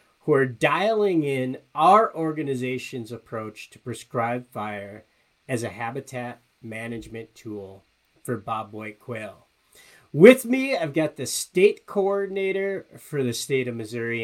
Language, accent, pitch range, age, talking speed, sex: English, American, 120-170 Hz, 50-69, 130 wpm, male